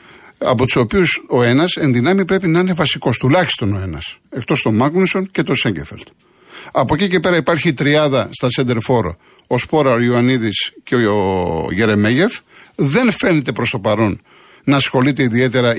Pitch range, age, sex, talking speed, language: 115-160 Hz, 50-69, male, 165 wpm, Greek